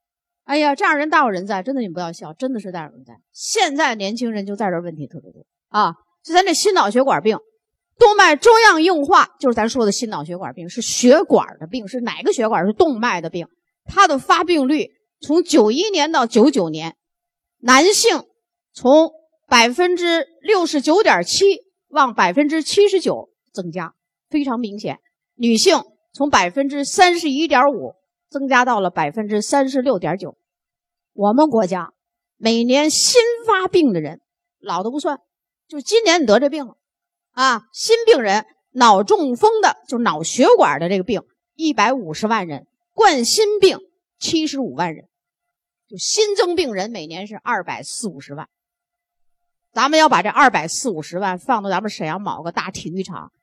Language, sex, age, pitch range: Chinese, female, 30-49, 220-350 Hz